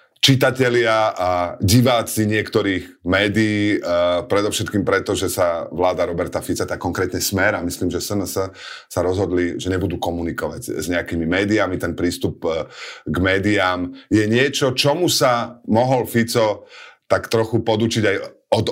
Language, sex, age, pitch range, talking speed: Slovak, male, 30-49, 90-115 Hz, 140 wpm